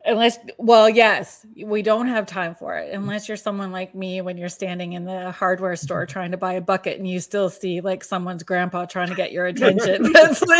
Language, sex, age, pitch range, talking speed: English, female, 30-49, 185-245 Hz, 220 wpm